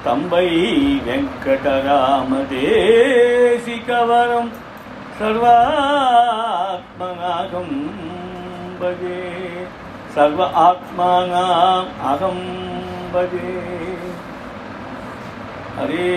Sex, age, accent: male, 50-69, native